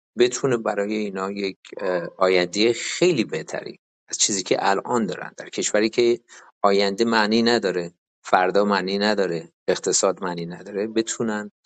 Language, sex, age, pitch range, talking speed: Persian, male, 50-69, 90-110 Hz, 130 wpm